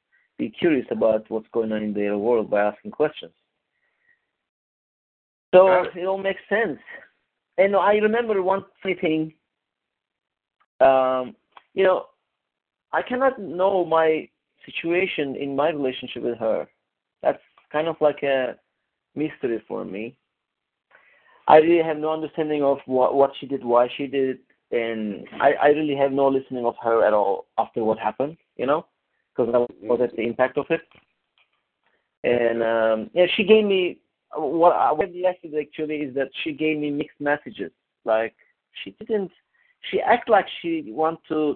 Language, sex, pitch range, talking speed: English, male, 125-190 Hz, 155 wpm